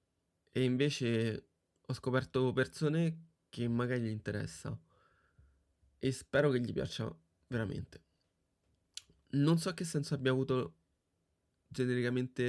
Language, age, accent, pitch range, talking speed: Italian, 20-39, native, 95-135 Hz, 110 wpm